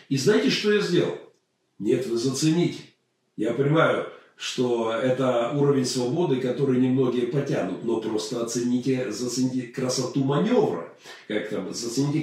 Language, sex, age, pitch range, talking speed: Russian, male, 40-59, 125-160 Hz, 120 wpm